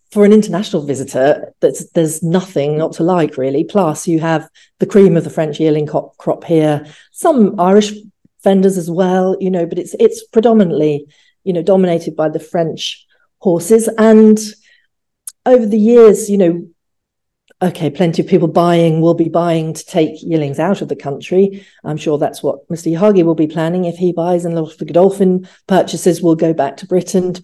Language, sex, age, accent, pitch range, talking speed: English, female, 40-59, British, 160-195 Hz, 185 wpm